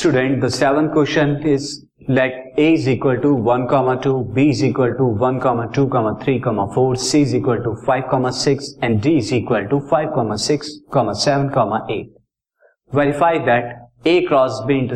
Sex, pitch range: male, 120-145 Hz